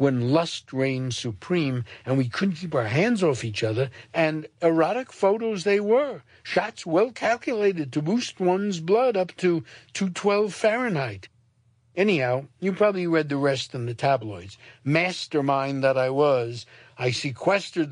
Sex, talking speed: male, 150 wpm